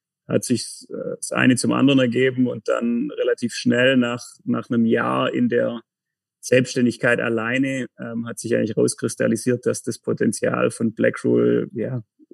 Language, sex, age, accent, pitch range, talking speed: German, male, 30-49, German, 115-135 Hz, 145 wpm